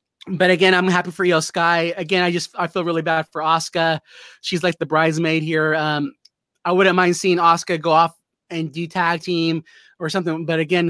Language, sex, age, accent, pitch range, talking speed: English, male, 20-39, American, 165-185 Hz, 200 wpm